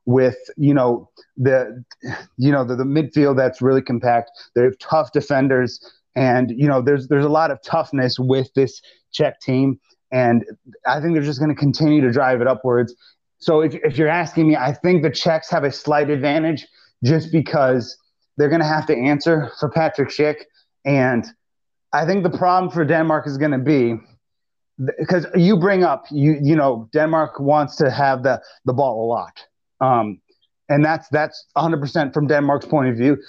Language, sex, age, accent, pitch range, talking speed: English, male, 30-49, American, 130-155 Hz, 190 wpm